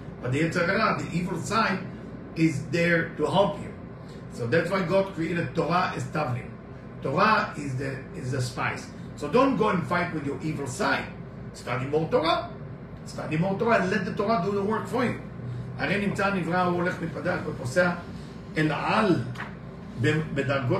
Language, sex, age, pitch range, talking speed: English, male, 50-69, 145-190 Hz, 115 wpm